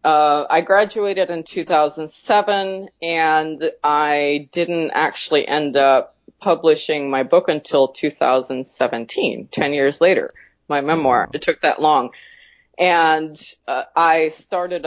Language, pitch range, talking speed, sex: English, 145-180 Hz, 115 wpm, female